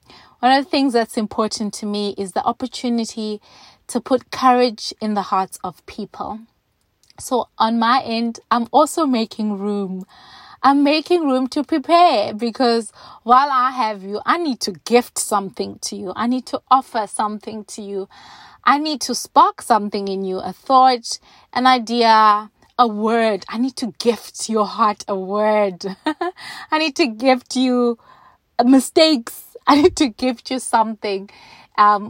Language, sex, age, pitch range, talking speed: English, female, 20-39, 205-255 Hz, 160 wpm